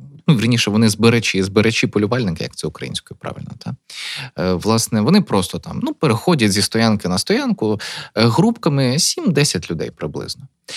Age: 20-39